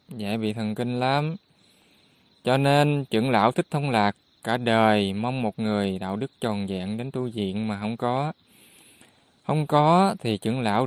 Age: 20-39